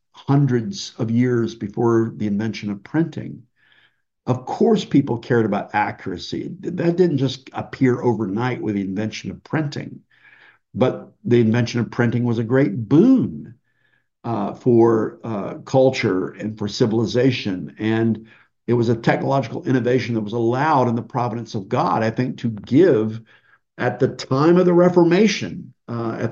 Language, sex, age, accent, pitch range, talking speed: English, male, 50-69, American, 110-130 Hz, 150 wpm